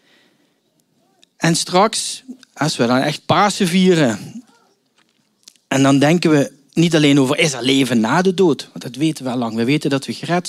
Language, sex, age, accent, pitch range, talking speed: Dutch, male, 40-59, Dutch, 140-195 Hz, 185 wpm